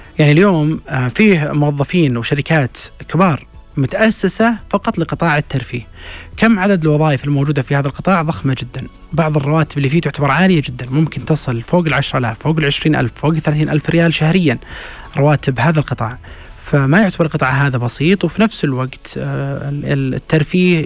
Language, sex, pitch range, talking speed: Arabic, male, 140-190 Hz, 145 wpm